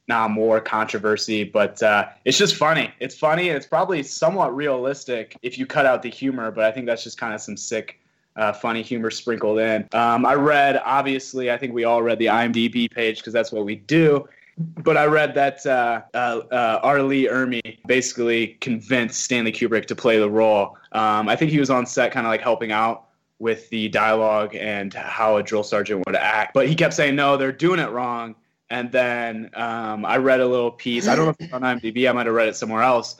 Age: 20-39